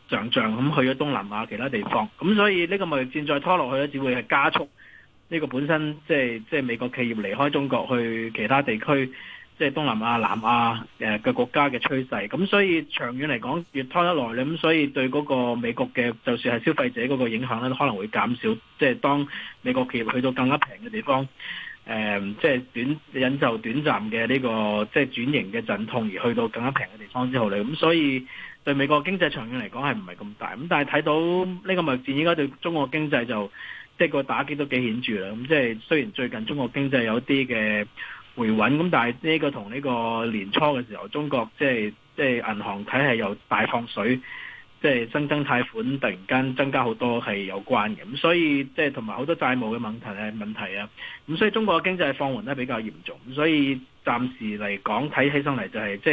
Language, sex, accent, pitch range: Chinese, male, native, 115-150 Hz